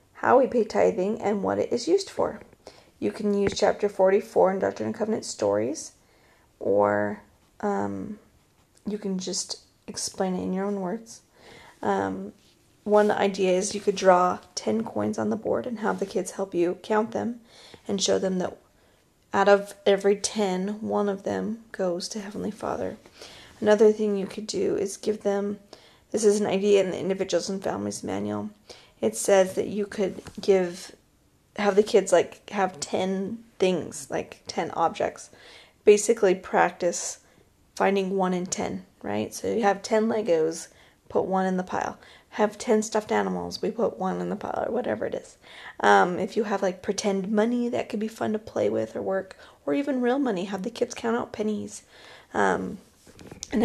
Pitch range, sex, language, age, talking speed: 180-215 Hz, female, English, 30-49, 180 wpm